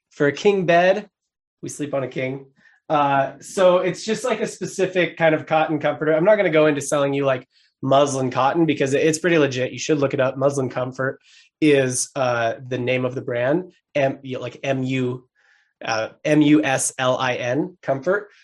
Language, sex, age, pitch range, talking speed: English, male, 20-39, 135-165 Hz, 185 wpm